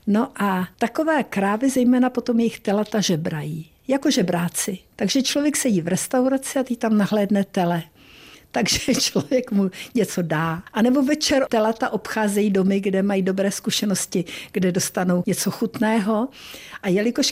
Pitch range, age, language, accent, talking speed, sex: 180-235 Hz, 60-79, Czech, native, 145 wpm, female